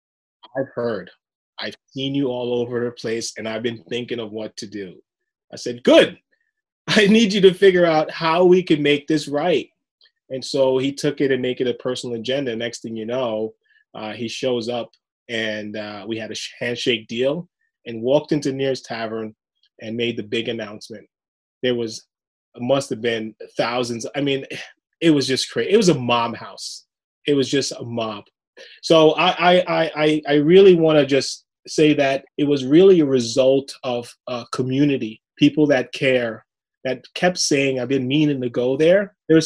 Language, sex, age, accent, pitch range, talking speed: English, male, 20-39, American, 120-150 Hz, 185 wpm